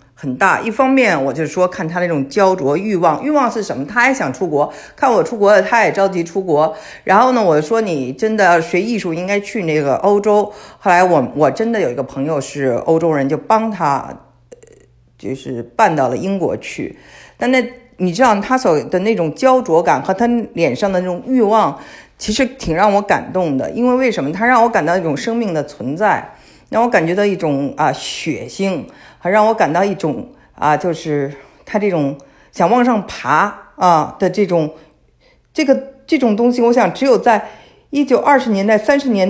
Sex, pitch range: female, 155-235 Hz